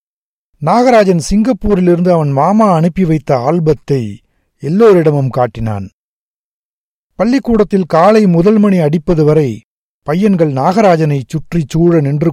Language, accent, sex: Tamil, native, male